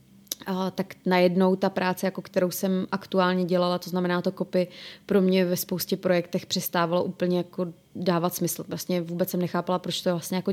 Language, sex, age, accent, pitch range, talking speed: Czech, female, 20-39, native, 175-190 Hz, 180 wpm